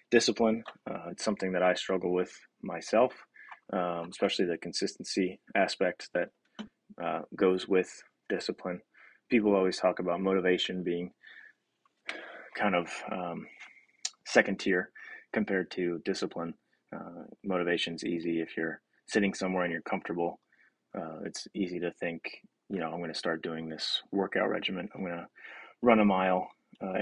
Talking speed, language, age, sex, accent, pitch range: 140 wpm, English, 20-39, male, American, 85-95 Hz